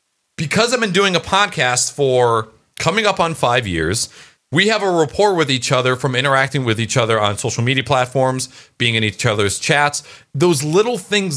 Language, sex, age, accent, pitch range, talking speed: English, male, 40-59, American, 120-165 Hz, 190 wpm